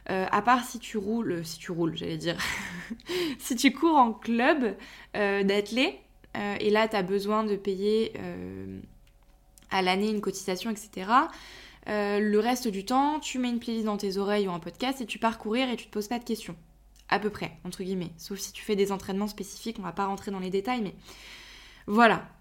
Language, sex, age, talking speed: French, female, 20-39, 210 wpm